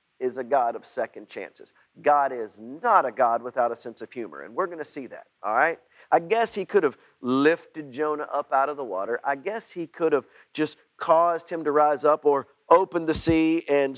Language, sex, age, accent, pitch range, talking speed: English, male, 40-59, American, 130-175 Hz, 225 wpm